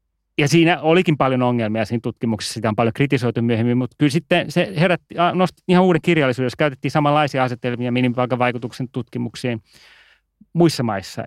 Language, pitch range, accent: Finnish, 110-145 Hz, native